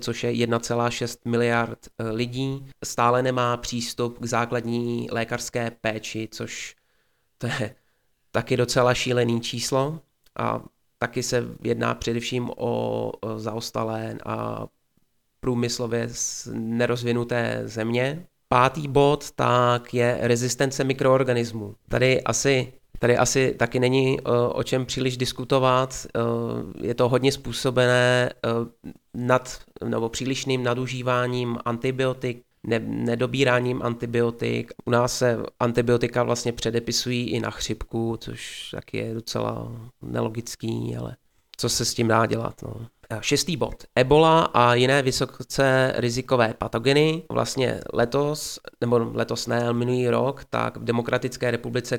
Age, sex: 20-39, male